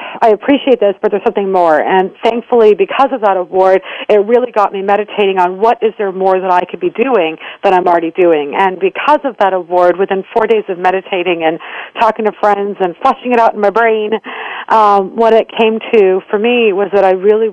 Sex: female